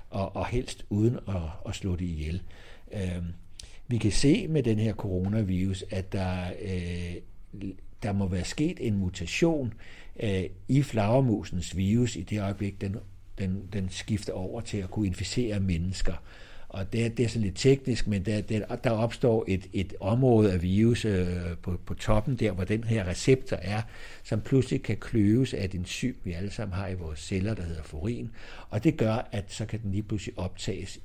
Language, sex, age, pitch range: Danish, male, 60-79, 95-120 Hz